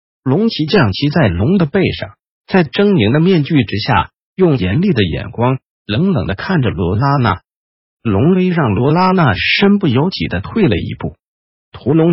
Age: 50-69